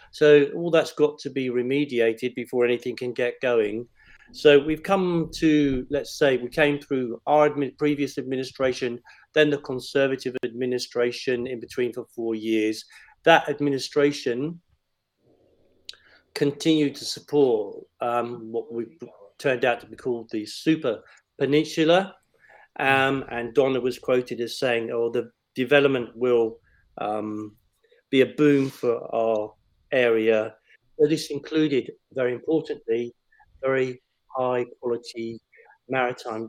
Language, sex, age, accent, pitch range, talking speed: English, male, 50-69, British, 120-150 Hz, 125 wpm